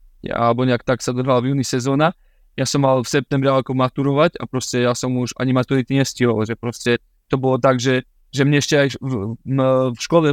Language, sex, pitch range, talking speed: Slovak, male, 125-150 Hz, 220 wpm